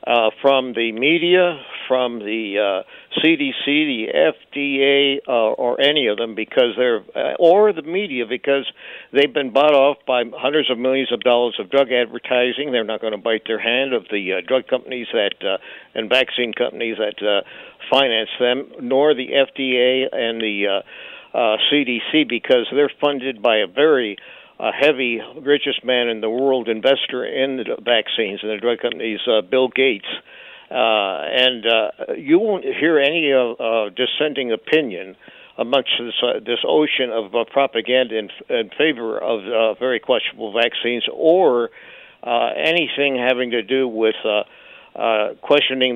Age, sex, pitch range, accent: 60-79, male, 115-140 Hz, American